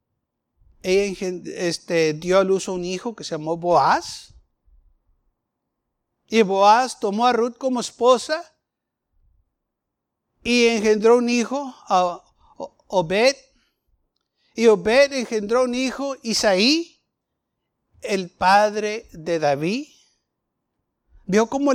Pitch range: 190-260 Hz